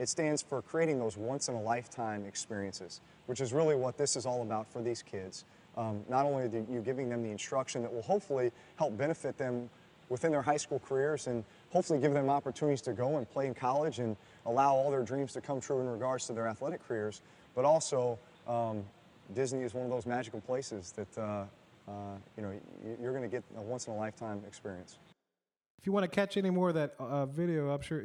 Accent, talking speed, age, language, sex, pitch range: American, 205 wpm, 30-49, English, male, 120-160 Hz